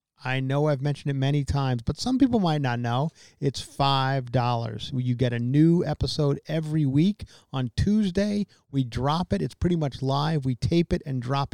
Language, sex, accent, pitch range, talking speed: English, male, American, 125-160 Hz, 185 wpm